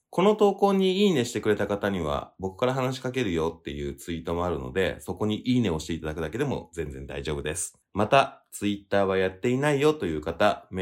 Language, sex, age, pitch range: Japanese, male, 20-39, 85-110 Hz